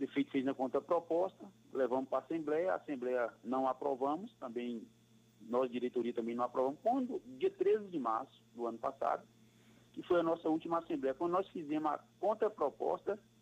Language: Portuguese